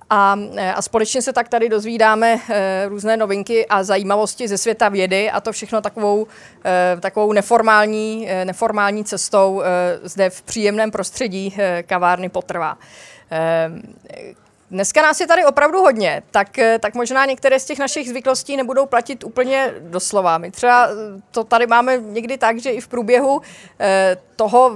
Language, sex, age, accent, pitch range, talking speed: Czech, female, 30-49, native, 195-255 Hz, 140 wpm